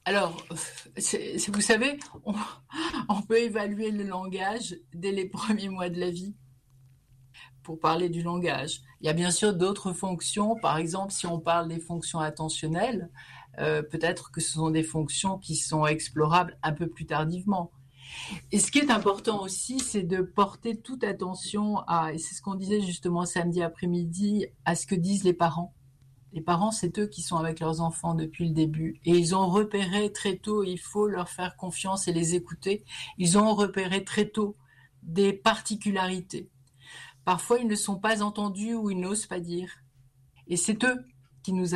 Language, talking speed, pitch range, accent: French, 175 wpm, 160-200 Hz, French